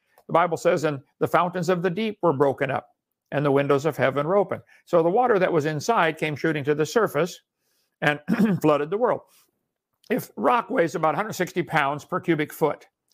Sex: male